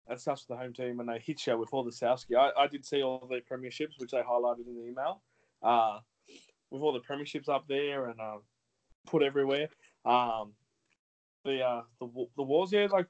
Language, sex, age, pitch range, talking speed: English, male, 20-39, 120-145 Hz, 210 wpm